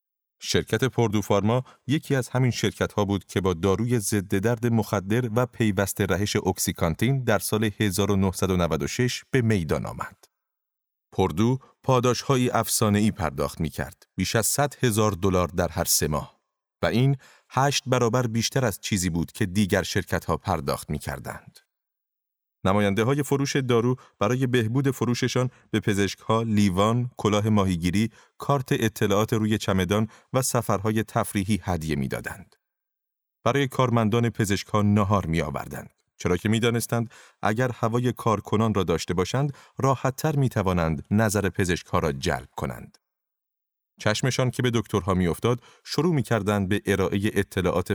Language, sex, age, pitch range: Persian, male, 30-49, 95-120 Hz